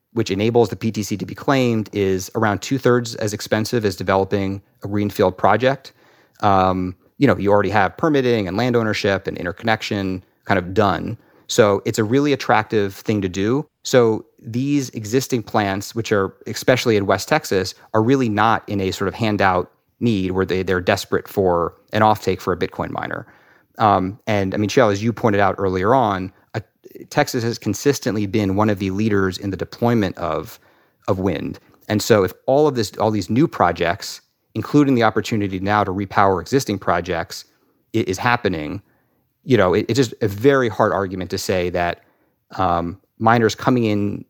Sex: male